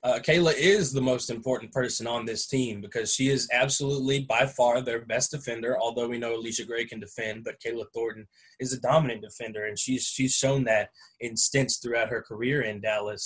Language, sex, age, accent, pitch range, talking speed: English, male, 20-39, American, 115-140 Hz, 205 wpm